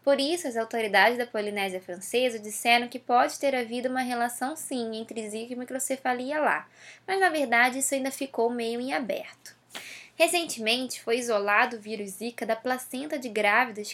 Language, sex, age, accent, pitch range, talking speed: Portuguese, female, 10-29, Brazilian, 230-295 Hz, 170 wpm